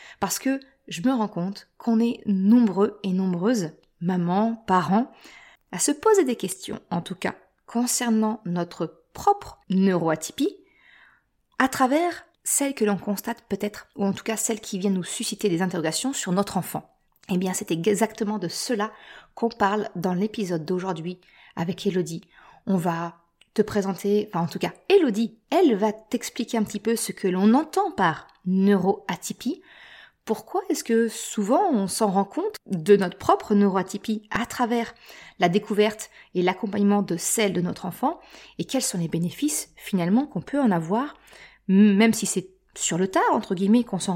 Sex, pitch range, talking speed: female, 190-230 Hz, 165 wpm